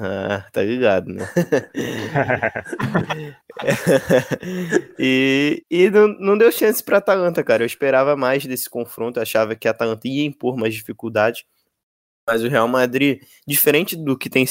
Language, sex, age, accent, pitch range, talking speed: Portuguese, male, 20-39, Brazilian, 120-155 Hz, 145 wpm